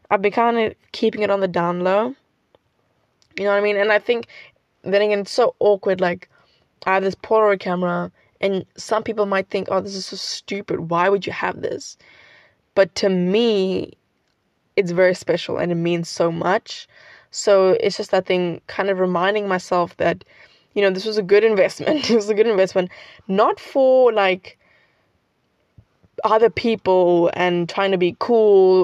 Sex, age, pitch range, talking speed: female, 20-39, 180-210 Hz, 180 wpm